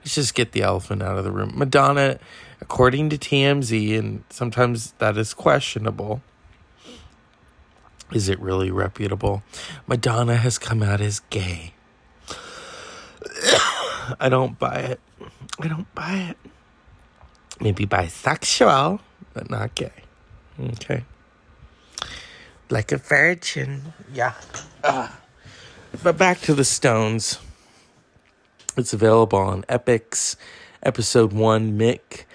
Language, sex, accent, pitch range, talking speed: English, male, American, 105-145 Hz, 110 wpm